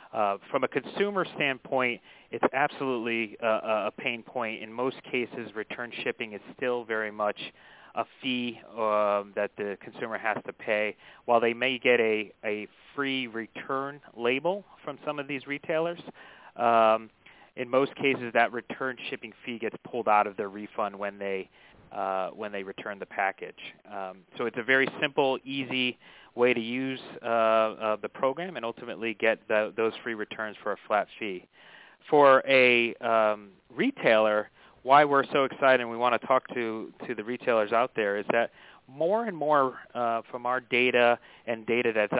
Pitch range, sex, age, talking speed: 110-130 Hz, male, 30-49, 170 wpm